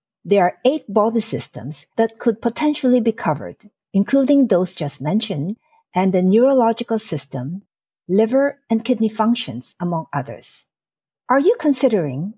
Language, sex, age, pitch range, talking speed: English, female, 60-79, 170-240 Hz, 130 wpm